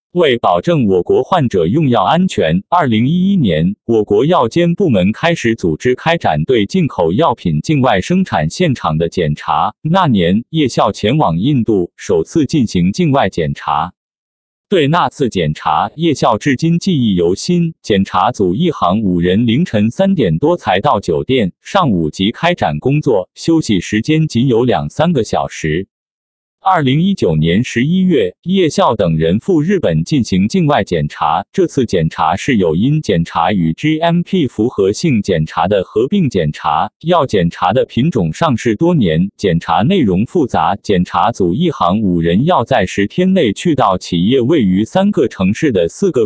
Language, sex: Chinese, male